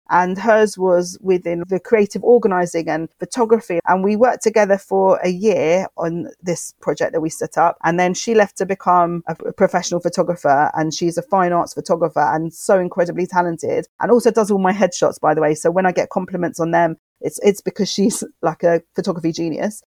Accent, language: British, English